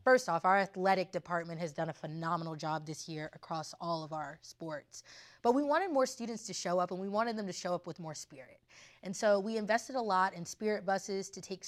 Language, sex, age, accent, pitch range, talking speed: English, female, 20-39, American, 165-195 Hz, 235 wpm